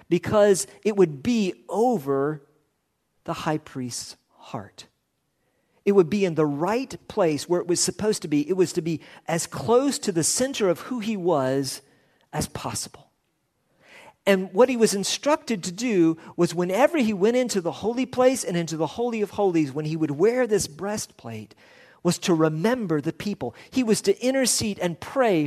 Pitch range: 150-220 Hz